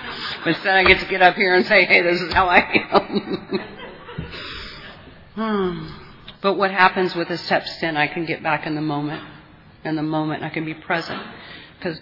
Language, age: English, 40-59